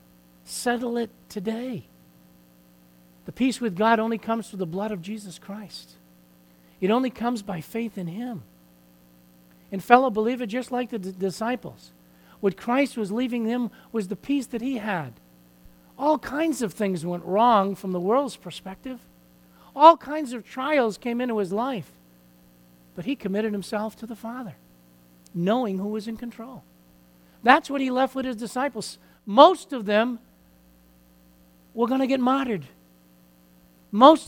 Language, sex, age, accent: English, male, 50-69, American